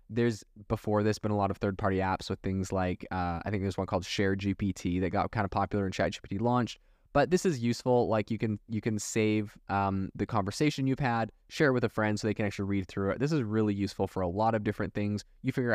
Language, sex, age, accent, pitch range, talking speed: English, male, 20-39, American, 100-120 Hz, 260 wpm